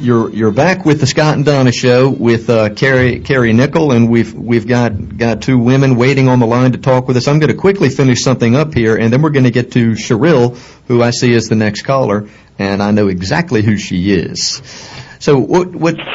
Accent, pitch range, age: American, 110-135 Hz, 50-69